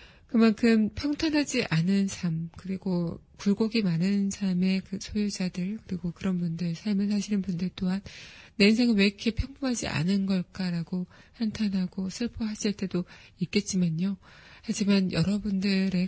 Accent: native